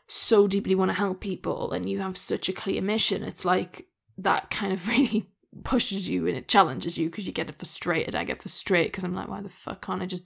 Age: 10-29